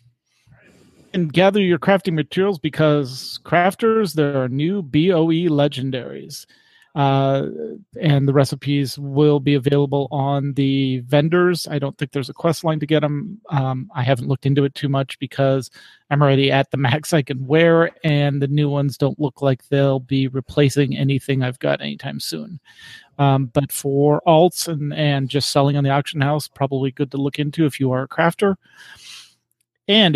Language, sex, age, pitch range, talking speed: English, male, 40-59, 135-155 Hz, 175 wpm